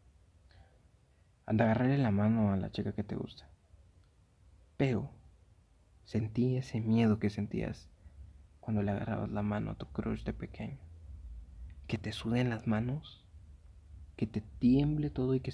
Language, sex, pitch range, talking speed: Spanish, male, 80-130 Hz, 145 wpm